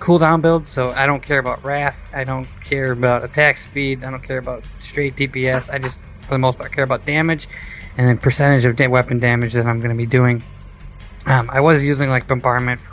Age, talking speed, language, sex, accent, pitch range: 20-39, 225 wpm, English, male, American, 120-140 Hz